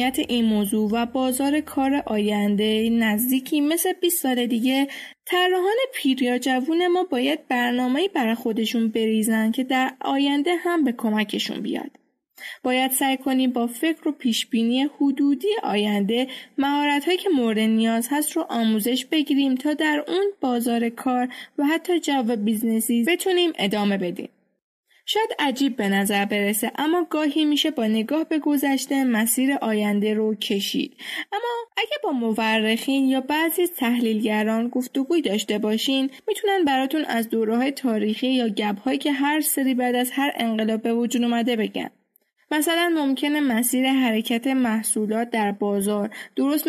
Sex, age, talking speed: female, 10-29, 140 wpm